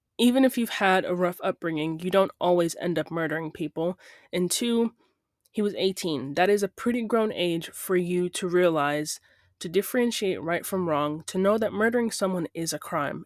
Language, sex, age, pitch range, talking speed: English, female, 20-39, 165-205 Hz, 190 wpm